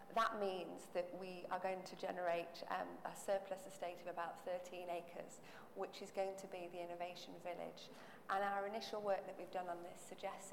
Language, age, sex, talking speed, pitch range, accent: English, 40-59, female, 195 wpm, 180-200 Hz, British